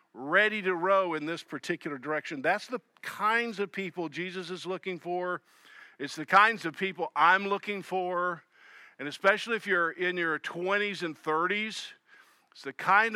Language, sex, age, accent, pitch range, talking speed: English, male, 50-69, American, 160-205 Hz, 165 wpm